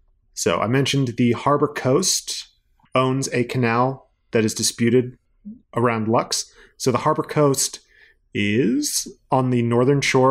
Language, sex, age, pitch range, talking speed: English, male, 30-49, 120-145 Hz, 135 wpm